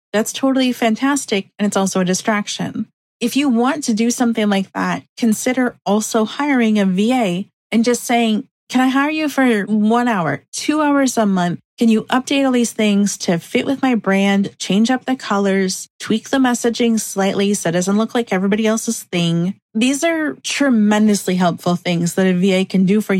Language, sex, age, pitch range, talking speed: English, female, 40-59, 190-245 Hz, 190 wpm